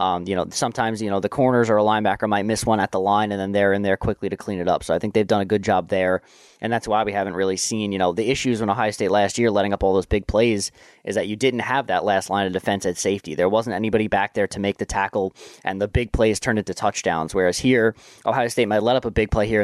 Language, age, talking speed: English, 20-39, 295 wpm